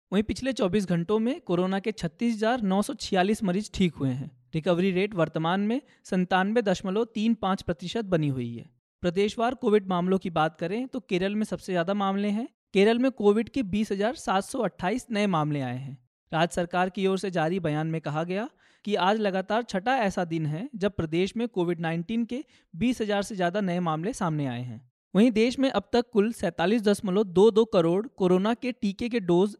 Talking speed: 175 wpm